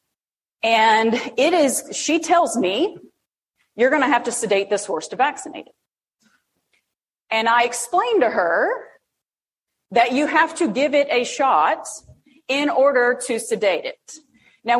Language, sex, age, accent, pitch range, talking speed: English, female, 40-59, American, 200-285 Hz, 145 wpm